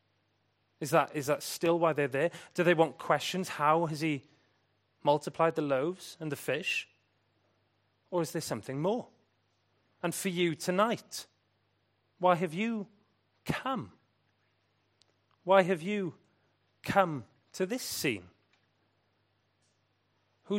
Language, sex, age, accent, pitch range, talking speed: English, male, 30-49, British, 110-170 Hz, 120 wpm